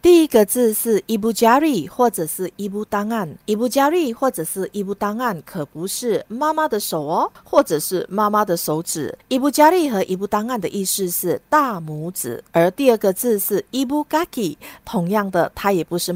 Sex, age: female, 50-69